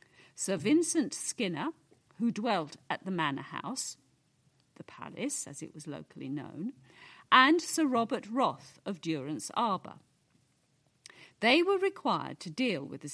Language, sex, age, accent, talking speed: English, female, 50-69, British, 135 wpm